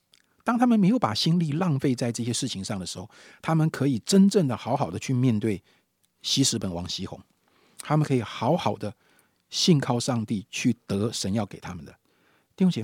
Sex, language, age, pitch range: male, Chinese, 50-69, 115-175 Hz